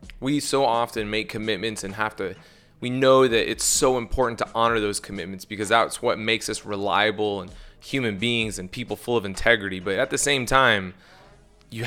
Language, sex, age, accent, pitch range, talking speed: English, male, 20-39, American, 105-130 Hz, 190 wpm